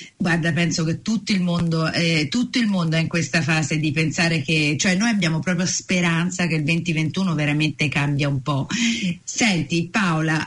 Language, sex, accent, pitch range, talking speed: Italian, female, native, 165-220 Hz, 180 wpm